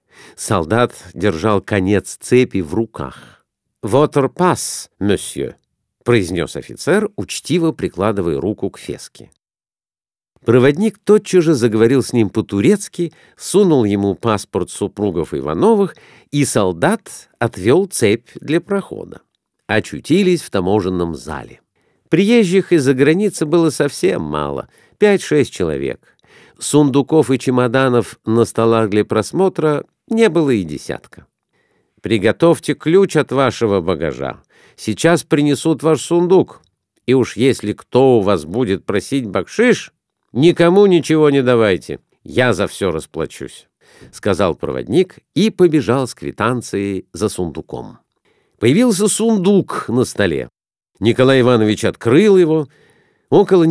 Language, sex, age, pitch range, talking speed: Russian, male, 50-69, 110-170 Hz, 115 wpm